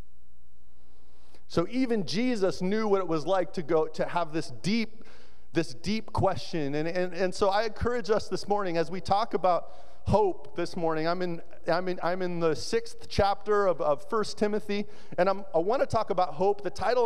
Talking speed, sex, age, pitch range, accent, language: 200 wpm, male, 40-59, 165-215 Hz, American, English